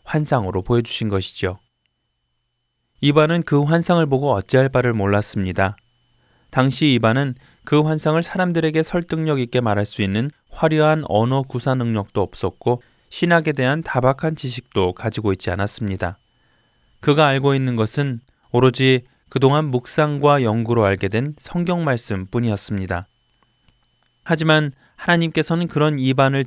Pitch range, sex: 115-145 Hz, male